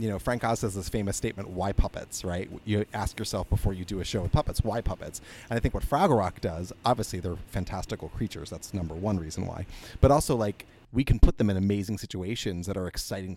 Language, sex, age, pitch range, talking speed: English, male, 30-49, 95-115 Hz, 235 wpm